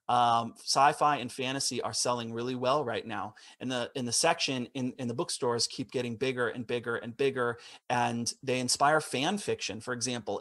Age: 30-49